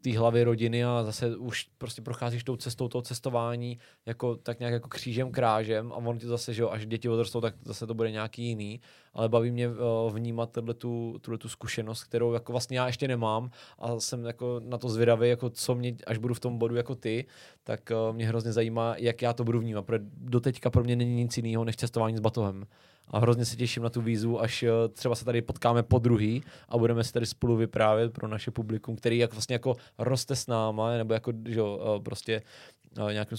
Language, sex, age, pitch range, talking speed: Czech, male, 20-39, 110-120 Hz, 210 wpm